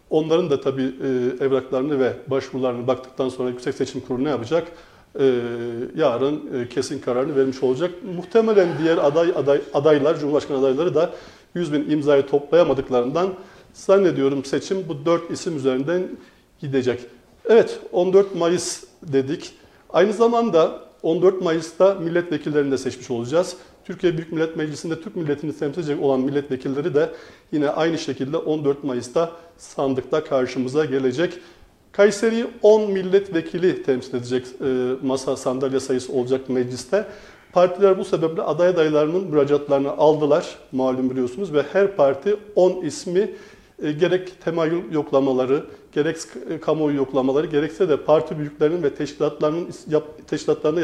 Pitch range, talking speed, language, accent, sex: 135-175 Hz, 125 wpm, Turkish, native, male